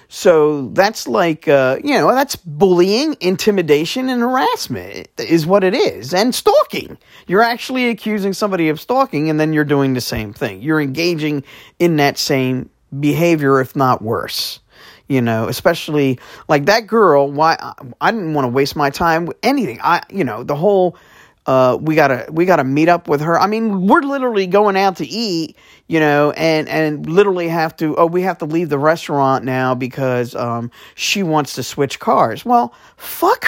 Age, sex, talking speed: 40-59, male, 180 wpm